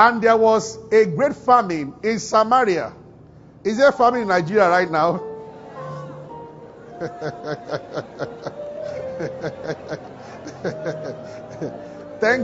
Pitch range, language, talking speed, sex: 185-245 Hz, English, 80 wpm, male